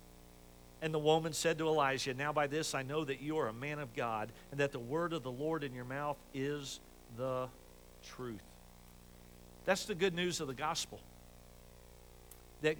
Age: 50-69